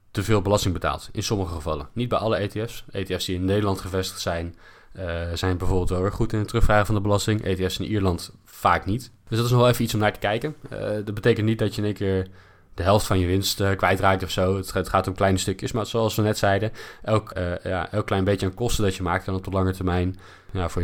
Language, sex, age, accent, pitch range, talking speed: Dutch, male, 20-39, Dutch, 95-110 Hz, 255 wpm